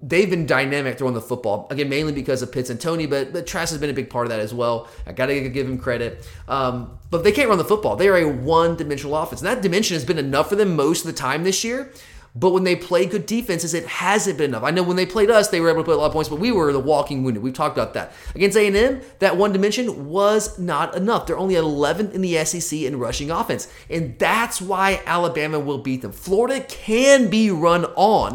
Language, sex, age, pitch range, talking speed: English, male, 30-49, 135-180 Hz, 255 wpm